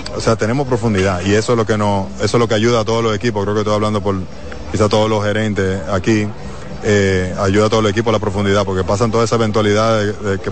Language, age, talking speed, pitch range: Spanish, 20-39, 250 wpm, 100-110 Hz